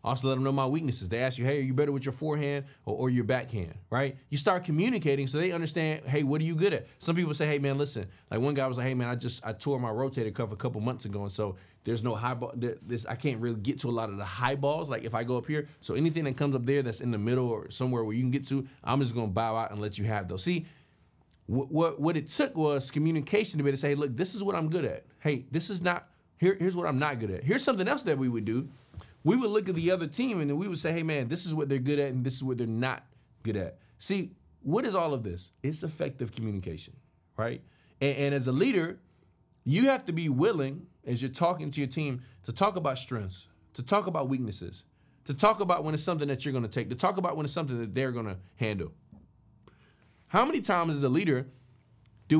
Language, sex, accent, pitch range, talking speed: English, male, American, 120-160 Hz, 265 wpm